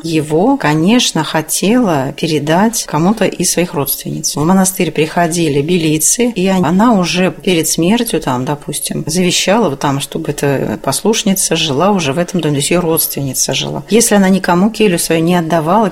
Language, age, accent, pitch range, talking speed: Russian, 30-49, native, 150-185 Hz, 155 wpm